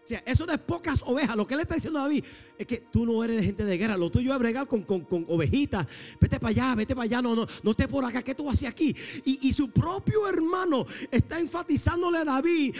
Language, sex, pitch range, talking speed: English, male, 265-325 Hz, 260 wpm